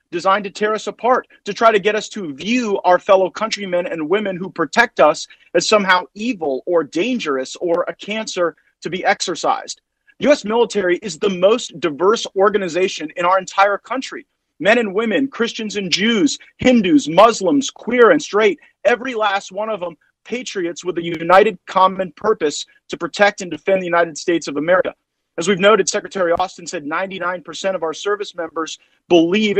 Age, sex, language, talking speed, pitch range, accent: 40-59, male, English, 175 wpm, 175-230 Hz, American